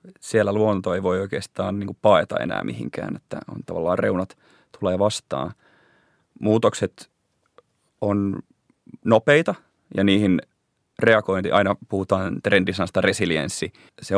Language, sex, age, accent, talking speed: Finnish, male, 30-49, native, 115 wpm